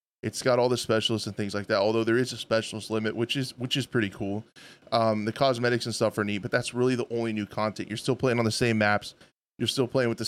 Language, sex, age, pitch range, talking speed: English, male, 20-39, 115-135 Hz, 275 wpm